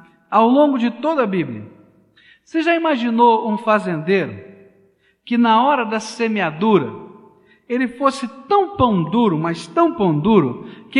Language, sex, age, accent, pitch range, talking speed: Portuguese, male, 60-79, Brazilian, 160-245 Hz, 140 wpm